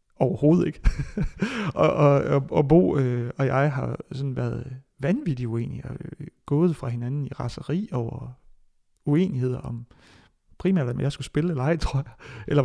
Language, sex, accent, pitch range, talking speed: Danish, male, native, 125-150 Hz, 145 wpm